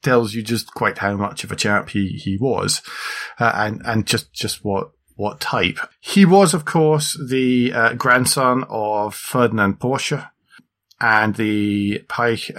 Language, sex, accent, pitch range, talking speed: English, male, British, 105-130 Hz, 155 wpm